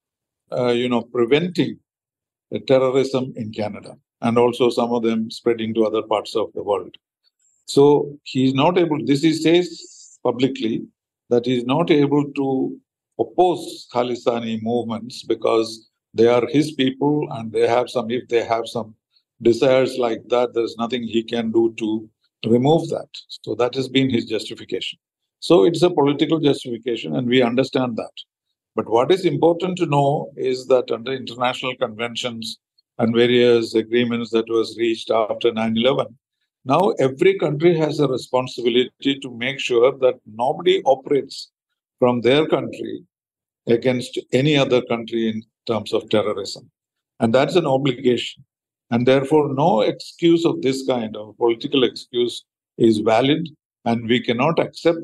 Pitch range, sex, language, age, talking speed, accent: 115-145 Hz, male, English, 50-69, 155 wpm, Indian